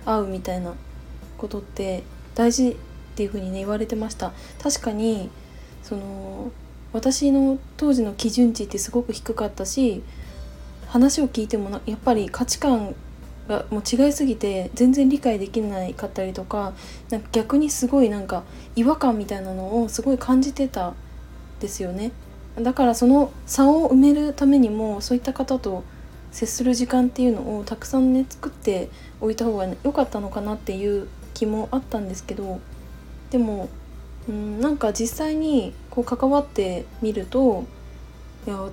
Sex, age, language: female, 20-39, Japanese